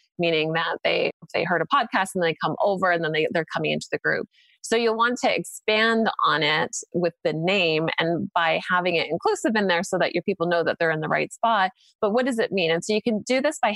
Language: English